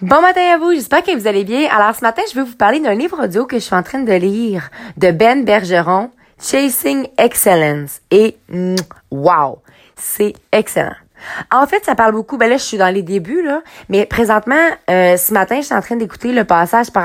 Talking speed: 220 wpm